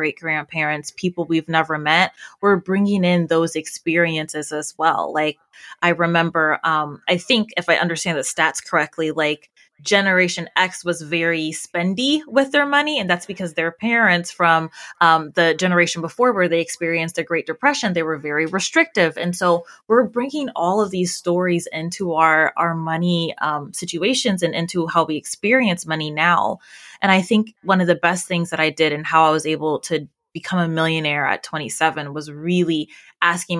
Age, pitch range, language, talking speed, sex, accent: 20-39, 160-190 Hz, English, 175 wpm, female, American